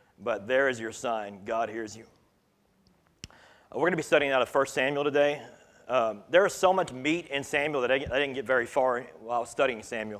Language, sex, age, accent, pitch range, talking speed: English, male, 40-59, American, 115-140 Hz, 210 wpm